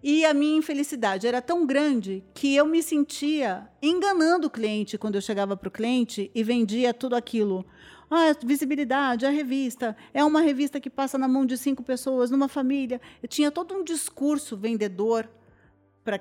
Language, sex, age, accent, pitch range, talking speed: Portuguese, female, 40-59, Brazilian, 195-280 Hz, 180 wpm